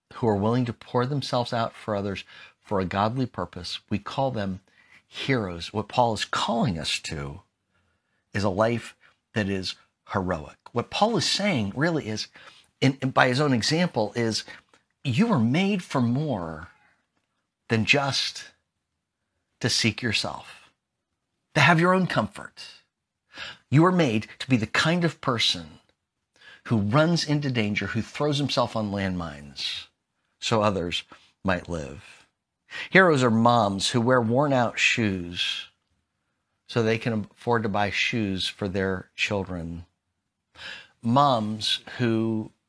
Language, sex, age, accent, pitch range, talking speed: English, male, 50-69, American, 95-125 Hz, 135 wpm